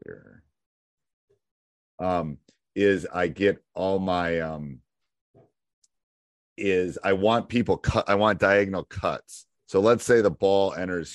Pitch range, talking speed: 80-100 Hz, 125 wpm